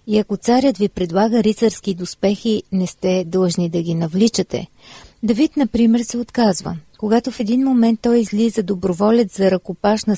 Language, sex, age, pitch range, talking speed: Bulgarian, female, 40-59, 185-235 Hz, 155 wpm